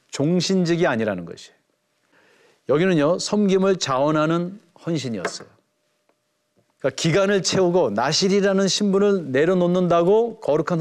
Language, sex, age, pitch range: Korean, male, 40-59, 140-195 Hz